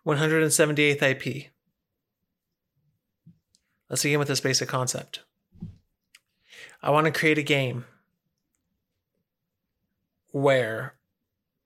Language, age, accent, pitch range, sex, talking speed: English, 30-49, American, 135-150 Hz, male, 75 wpm